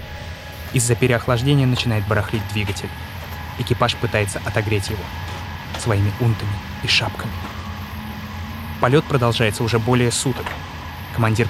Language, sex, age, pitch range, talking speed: Russian, male, 20-39, 100-120 Hz, 100 wpm